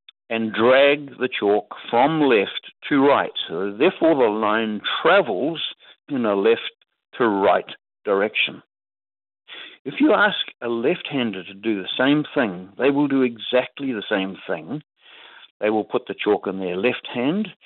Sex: male